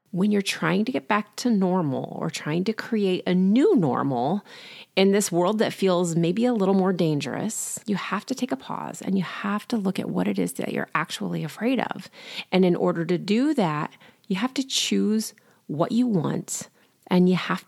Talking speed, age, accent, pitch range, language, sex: 205 wpm, 30-49, American, 160-225 Hz, English, female